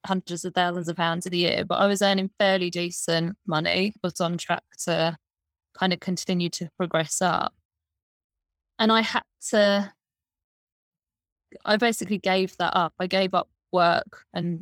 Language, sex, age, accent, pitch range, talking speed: English, female, 20-39, British, 170-190 Hz, 155 wpm